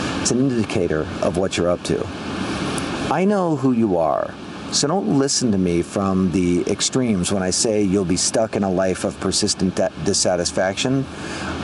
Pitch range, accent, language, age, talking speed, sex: 95-130 Hz, American, English, 50-69, 170 wpm, male